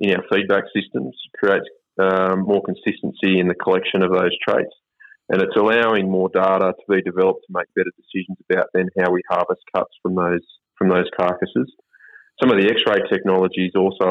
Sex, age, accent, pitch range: male, 20-39, Australian, 90-95 Hz